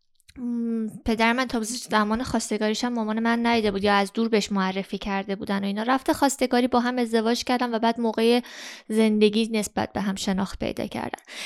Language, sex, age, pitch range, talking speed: Persian, female, 20-39, 220-265 Hz, 180 wpm